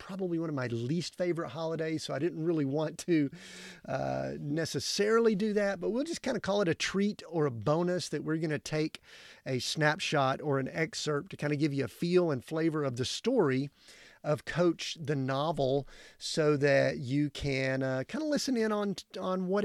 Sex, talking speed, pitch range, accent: male, 200 wpm, 140-185 Hz, American